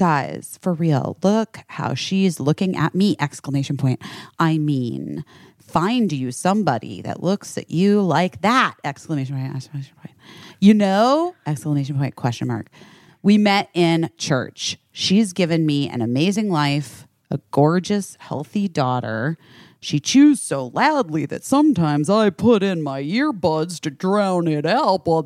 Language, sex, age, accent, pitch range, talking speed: English, female, 30-49, American, 145-205 Hz, 145 wpm